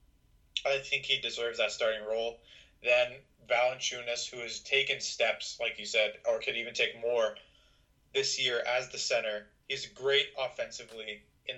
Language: English